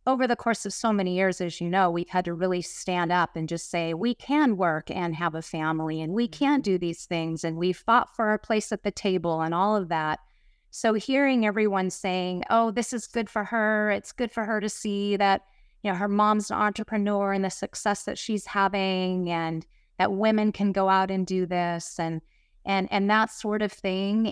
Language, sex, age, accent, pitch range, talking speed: English, female, 30-49, American, 170-210 Hz, 220 wpm